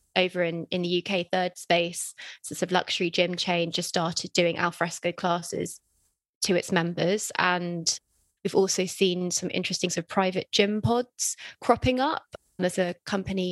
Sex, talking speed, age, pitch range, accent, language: female, 160 wpm, 20-39, 170-190 Hz, British, English